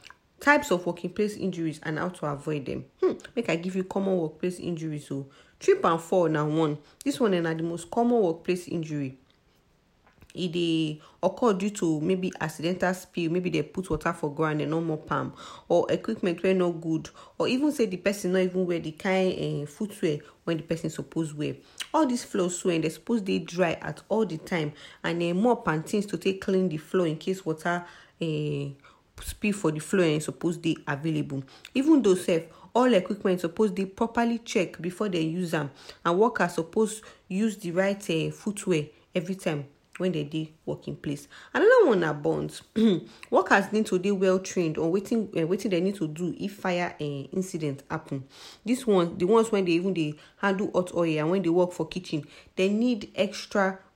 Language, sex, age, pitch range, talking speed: English, female, 40-59, 160-195 Hz, 205 wpm